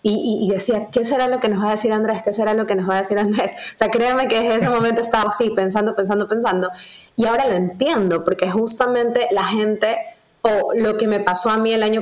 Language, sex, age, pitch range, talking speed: Spanish, female, 20-39, 190-230 Hz, 255 wpm